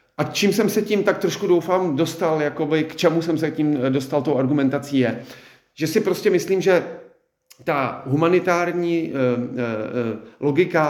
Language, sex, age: Czech, male, 40-59